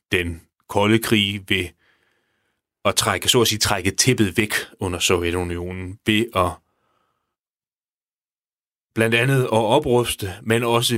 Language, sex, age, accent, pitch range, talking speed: Danish, male, 30-49, native, 95-115 Hz, 120 wpm